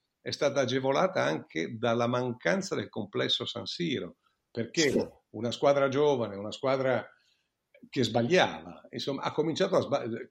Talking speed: 135 wpm